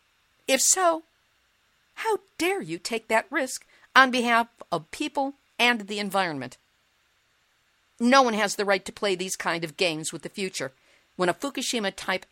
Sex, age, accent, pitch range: female, 50-69, American, 185-255 Hz